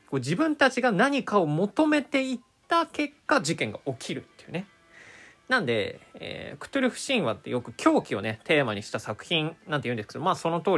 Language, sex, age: Japanese, male, 20-39